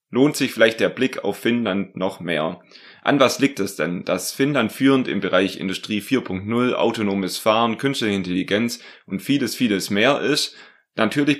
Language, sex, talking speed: German, male, 165 wpm